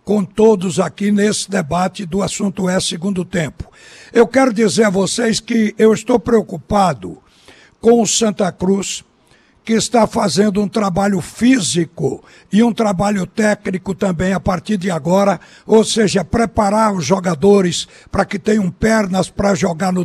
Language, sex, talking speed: Portuguese, male, 150 wpm